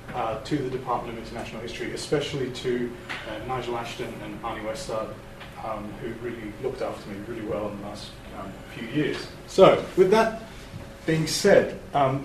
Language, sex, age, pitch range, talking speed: English, male, 30-49, 130-175 Hz, 170 wpm